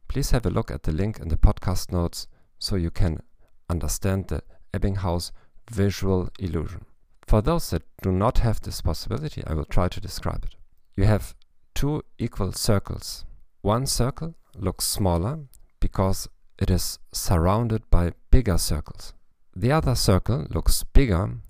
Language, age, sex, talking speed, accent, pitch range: English, 50-69, male, 150 wpm, German, 85-110 Hz